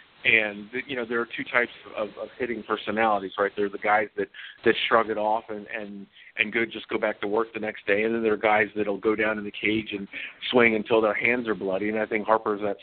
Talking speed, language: 265 wpm, English